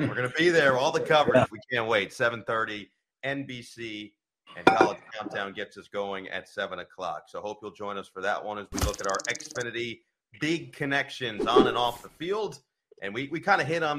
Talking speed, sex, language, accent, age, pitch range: 215 wpm, male, English, American, 30-49, 95-125 Hz